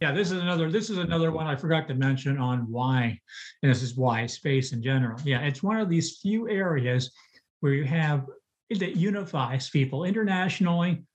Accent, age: American, 50-69